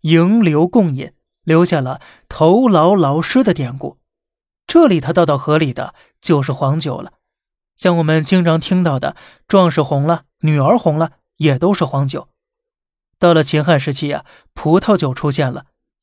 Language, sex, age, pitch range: Chinese, male, 20-39, 150-180 Hz